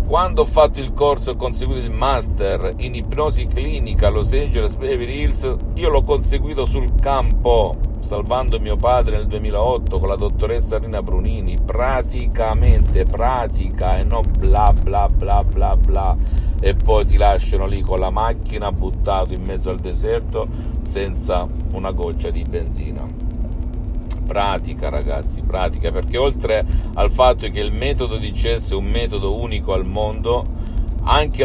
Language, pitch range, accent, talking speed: Italian, 85-105 Hz, native, 150 wpm